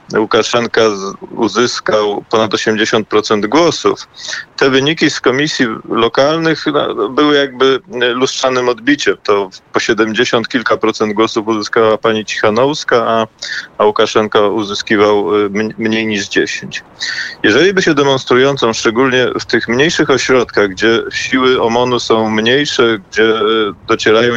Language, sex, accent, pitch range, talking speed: Polish, male, native, 110-125 Hz, 115 wpm